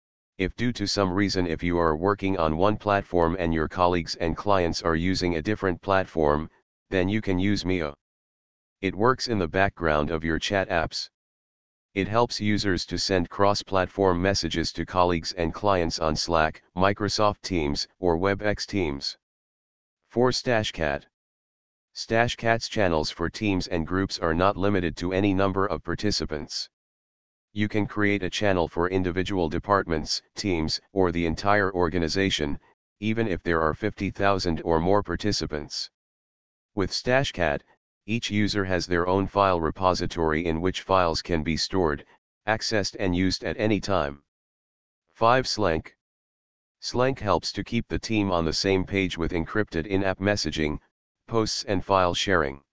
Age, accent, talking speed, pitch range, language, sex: 40-59, American, 150 wpm, 80-100 Hz, English, male